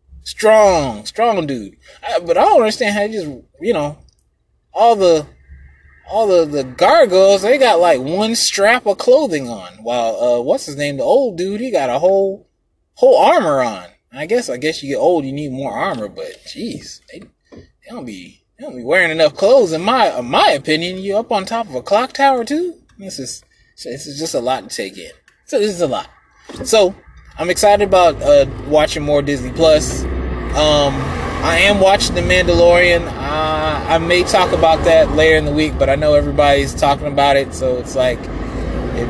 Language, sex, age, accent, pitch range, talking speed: English, male, 20-39, American, 135-180 Hz, 200 wpm